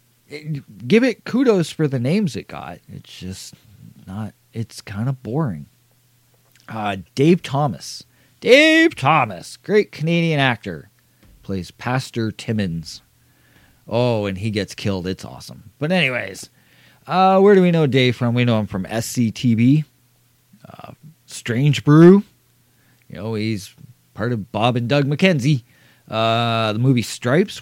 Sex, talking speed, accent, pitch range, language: male, 135 wpm, American, 105-145 Hz, English